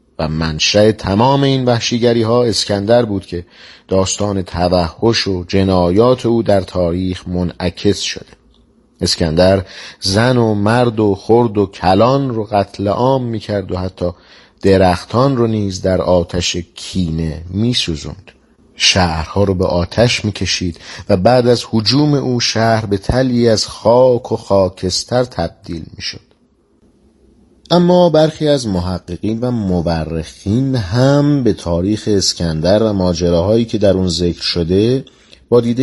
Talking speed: 130 wpm